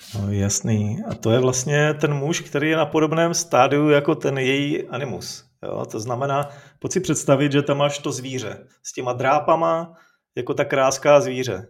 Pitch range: 135-170 Hz